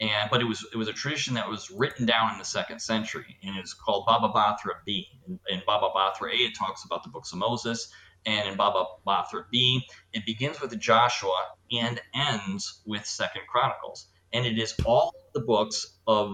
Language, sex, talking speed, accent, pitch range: English, male, 200 wpm, American, 105-125 Hz